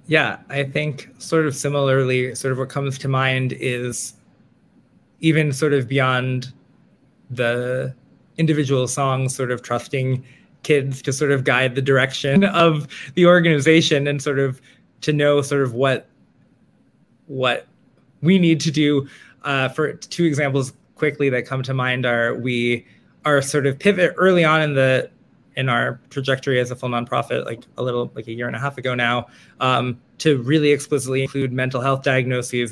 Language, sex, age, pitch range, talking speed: English, male, 20-39, 125-140 Hz, 165 wpm